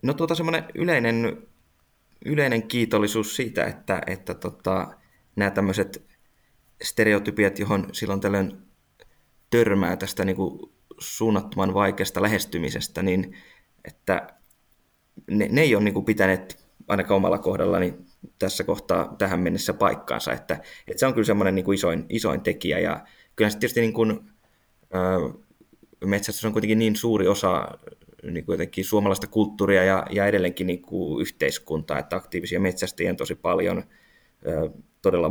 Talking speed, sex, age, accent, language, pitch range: 135 wpm, male, 20-39, native, Finnish, 90-105 Hz